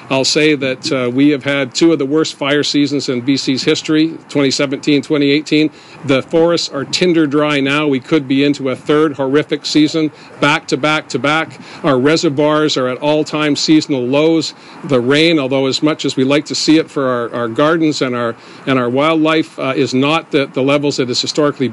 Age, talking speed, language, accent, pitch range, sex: 50-69, 195 wpm, English, American, 140-160 Hz, male